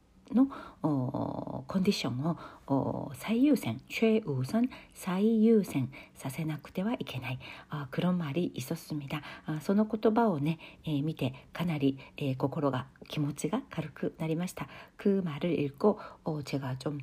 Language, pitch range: Korean, 150-220 Hz